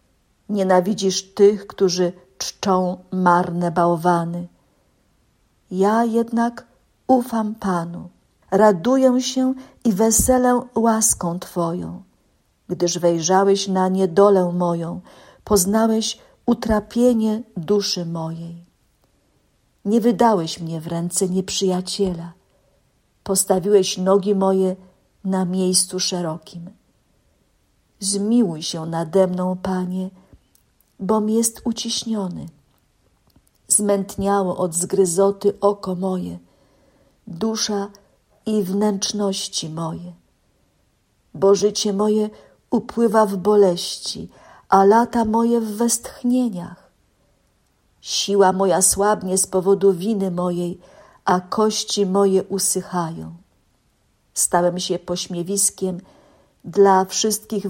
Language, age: Polish, 50-69